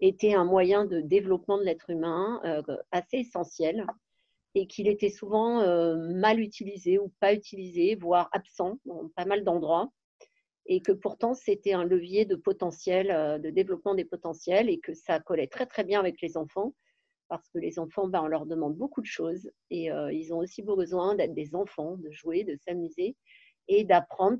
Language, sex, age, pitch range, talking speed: French, female, 40-59, 170-215 Hz, 185 wpm